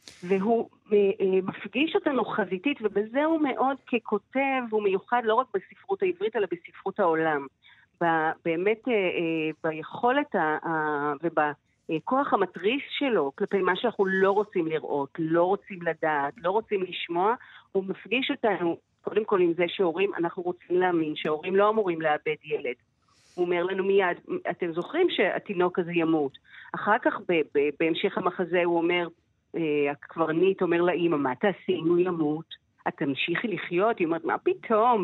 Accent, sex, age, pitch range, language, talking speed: native, female, 40-59, 170-240 Hz, Hebrew, 140 wpm